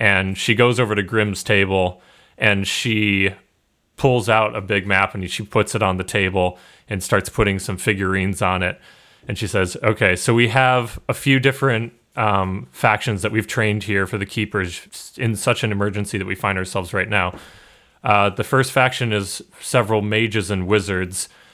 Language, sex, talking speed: English, male, 185 wpm